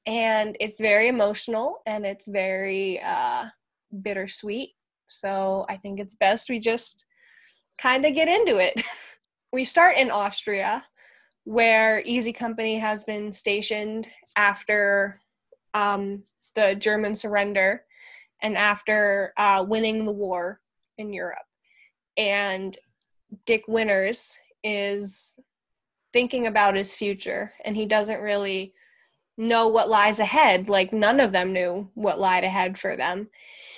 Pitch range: 200-230 Hz